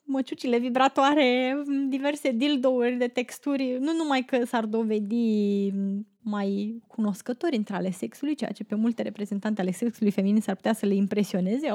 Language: Romanian